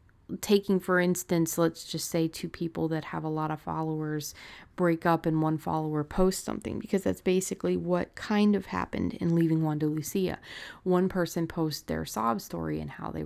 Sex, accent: female, American